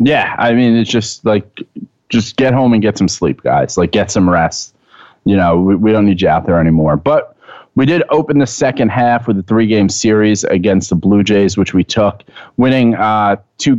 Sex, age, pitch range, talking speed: male, 30-49, 105-135 Hz, 220 wpm